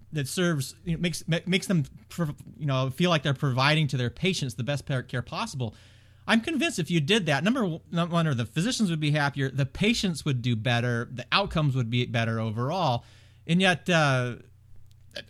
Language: English